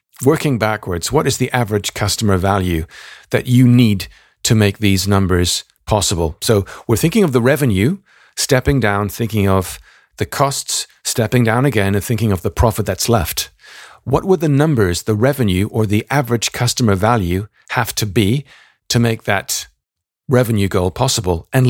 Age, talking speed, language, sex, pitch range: 50-69, 165 wpm, English, male, 100-125 Hz